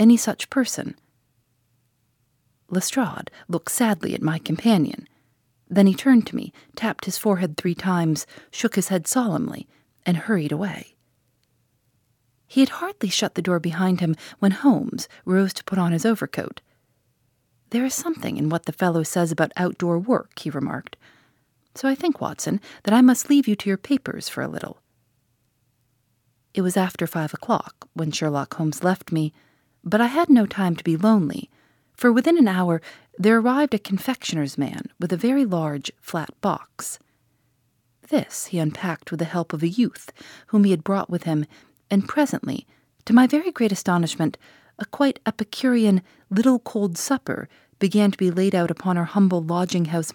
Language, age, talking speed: English, 40-59, 170 wpm